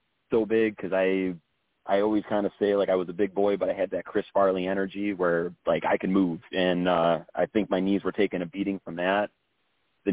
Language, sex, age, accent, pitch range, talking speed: English, male, 30-49, American, 90-105 Hz, 235 wpm